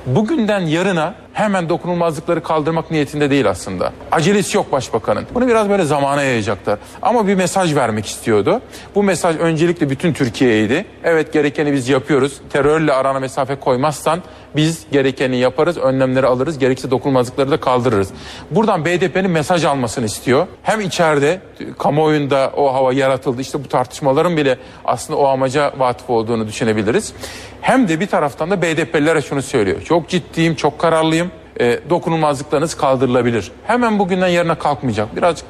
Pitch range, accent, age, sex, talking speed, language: 130-175 Hz, native, 40-59, male, 140 wpm, Turkish